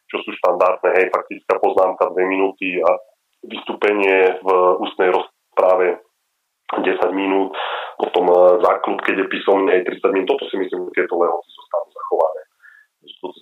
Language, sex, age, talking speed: Slovak, male, 30-49, 140 wpm